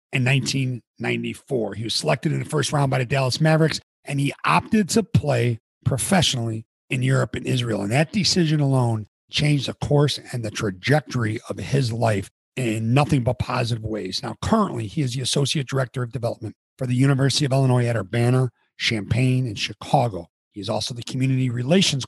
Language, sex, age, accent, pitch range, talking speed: English, male, 40-59, American, 110-140 Hz, 180 wpm